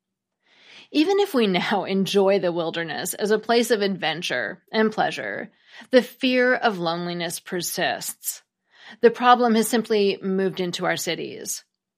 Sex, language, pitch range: female, English, 180-235 Hz